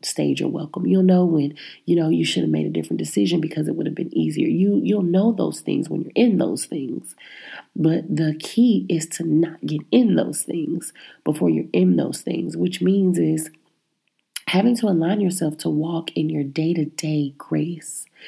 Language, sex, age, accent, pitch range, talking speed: English, female, 30-49, American, 155-185 Hz, 195 wpm